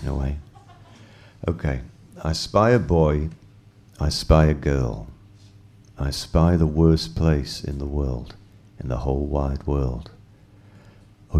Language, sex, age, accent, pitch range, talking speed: English, male, 40-59, British, 80-100 Hz, 130 wpm